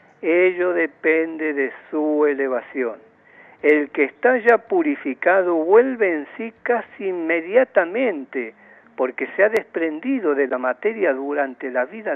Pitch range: 135-185 Hz